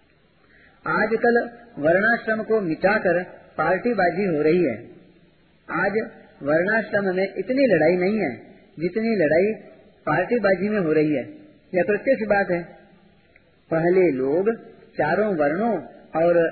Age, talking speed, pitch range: 40-59, 115 wpm, 155-200 Hz